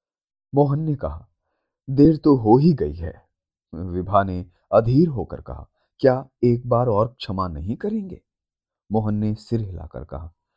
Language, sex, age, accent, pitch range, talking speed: Hindi, male, 30-49, native, 90-130 Hz, 150 wpm